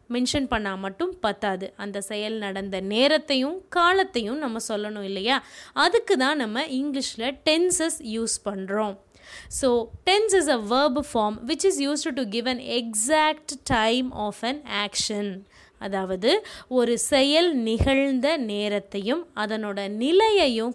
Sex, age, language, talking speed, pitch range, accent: female, 20-39, Tamil, 125 wpm, 205-300 Hz, native